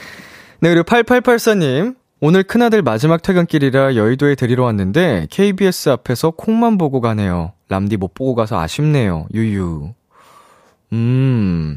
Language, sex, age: Korean, male, 20-39